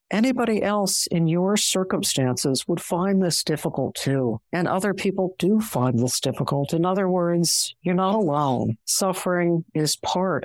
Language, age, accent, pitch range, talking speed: English, 60-79, American, 135-190 Hz, 150 wpm